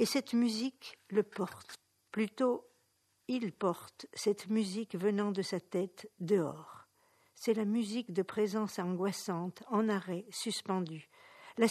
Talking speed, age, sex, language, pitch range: 130 wpm, 50-69, female, Italian, 185-220 Hz